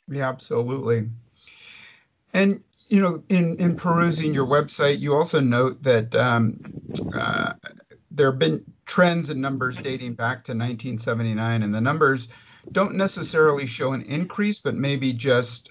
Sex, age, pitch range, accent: male, 50-69, 115-145 Hz, American